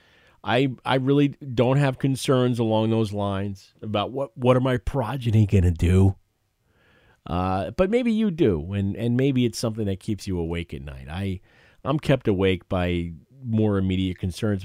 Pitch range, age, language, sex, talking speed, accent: 85-110 Hz, 40-59, English, male, 170 wpm, American